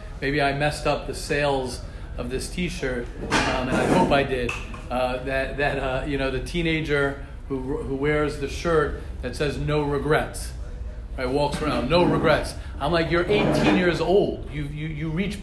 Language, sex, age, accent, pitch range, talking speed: English, male, 40-59, American, 135-165 Hz, 185 wpm